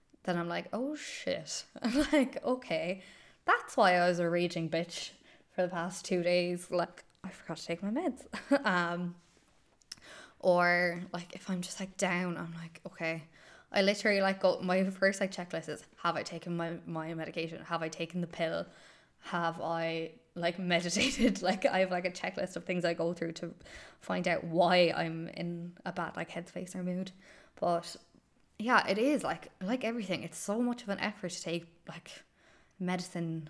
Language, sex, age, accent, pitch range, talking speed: English, female, 10-29, Irish, 170-200 Hz, 185 wpm